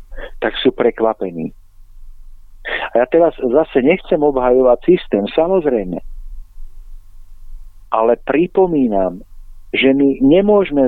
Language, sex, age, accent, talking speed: Czech, male, 50-69, native, 90 wpm